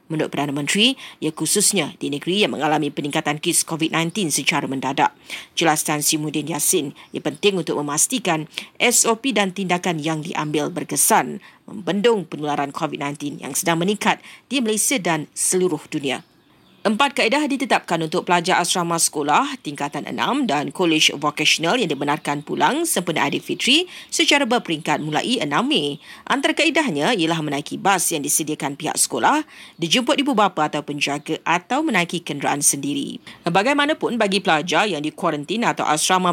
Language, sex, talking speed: Malay, female, 145 wpm